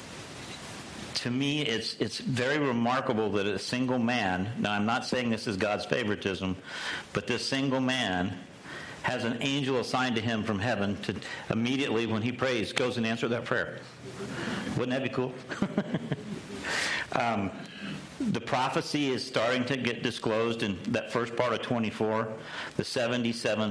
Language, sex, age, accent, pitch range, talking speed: English, male, 50-69, American, 105-125 Hz, 145 wpm